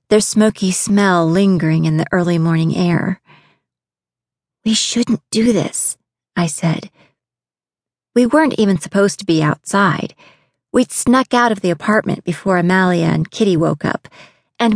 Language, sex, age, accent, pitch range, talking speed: English, female, 40-59, American, 180-225 Hz, 140 wpm